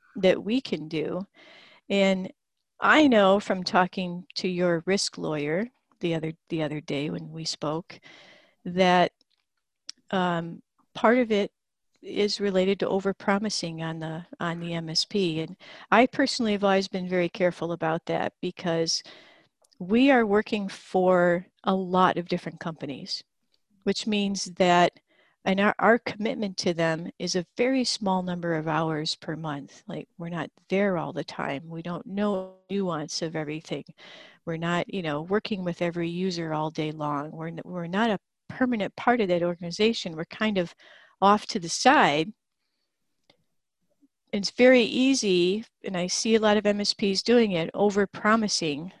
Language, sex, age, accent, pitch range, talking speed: English, female, 50-69, American, 165-210 Hz, 155 wpm